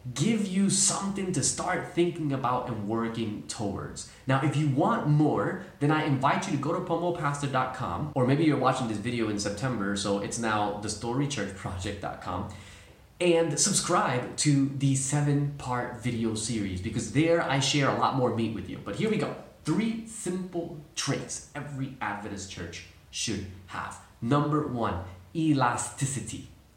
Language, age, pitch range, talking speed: English, 20-39, 110-145 Hz, 155 wpm